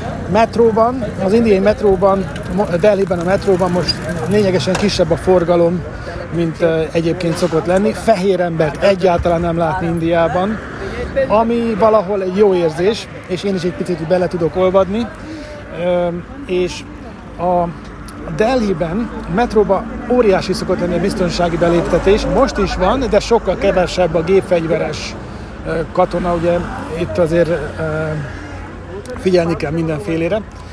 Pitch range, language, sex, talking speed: 165-205 Hz, Hungarian, male, 120 wpm